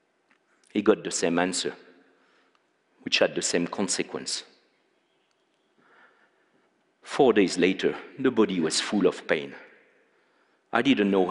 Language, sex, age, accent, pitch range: Chinese, male, 50-69, French, 105-130 Hz